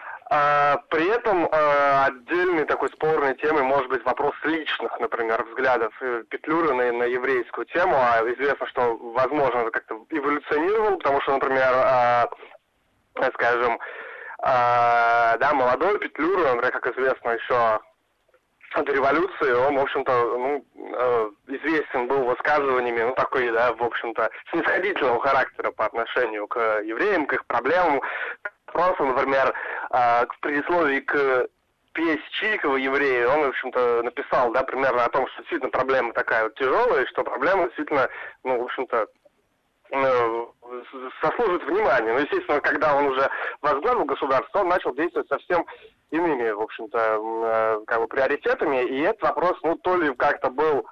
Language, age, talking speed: Russian, 20-39, 130 wpm